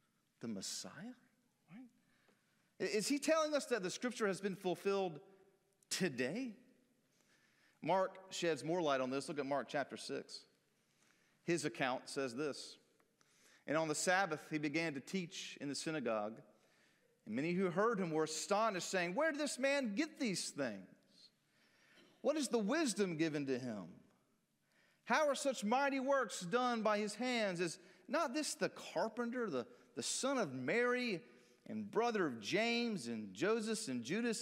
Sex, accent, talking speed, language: male, American, 155 wpm, English